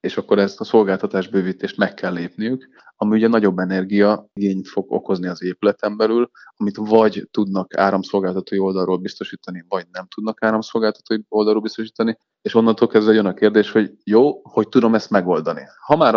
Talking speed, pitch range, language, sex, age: 165 wpm, 90-105 Hz, Hungarian, male, 30-49